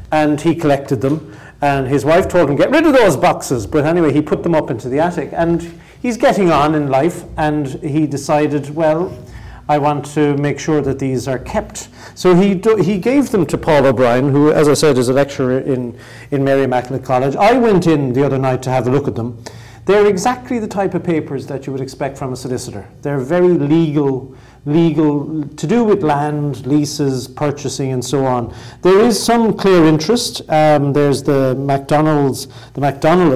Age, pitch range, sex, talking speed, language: 40-59, 130-165 Hz, male, 200 wpm, English